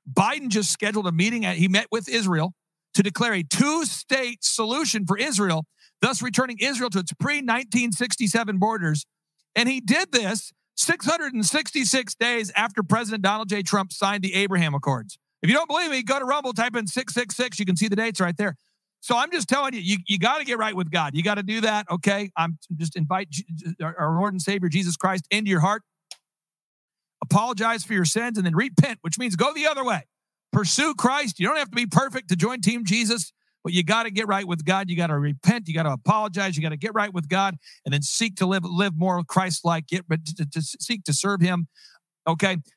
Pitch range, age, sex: 175-230 Hz, 50-69, male